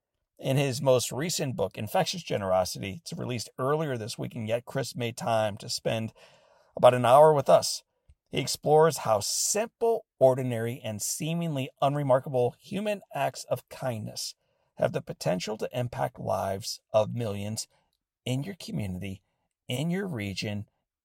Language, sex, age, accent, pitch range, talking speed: English, male, 50-69, American, 115-150 Hz, 145 wpm